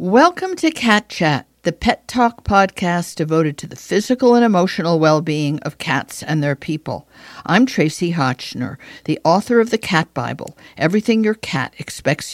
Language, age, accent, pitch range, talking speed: English, 50-69, American, 145-190 Hz, 160 wpm